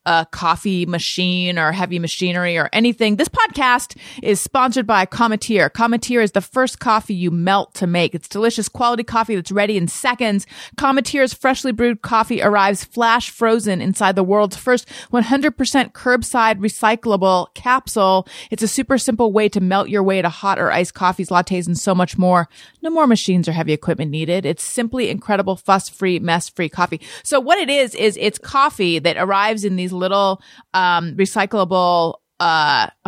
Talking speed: 170 wpm